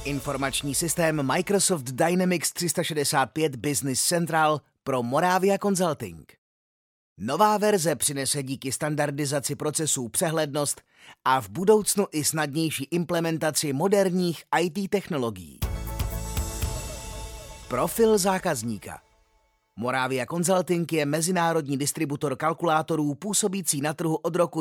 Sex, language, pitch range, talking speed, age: male, Czech, 135-175 Hz, 95 wpm, 30-49